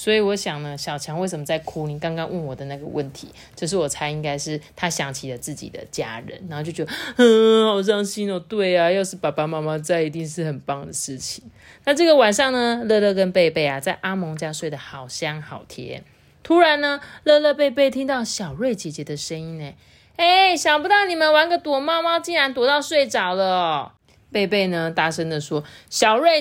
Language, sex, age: Chinese, female, 30-49